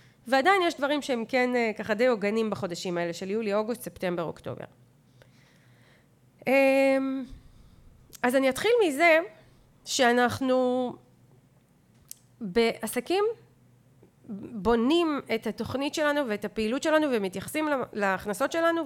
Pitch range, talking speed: 190-265 Hz, 100 wpm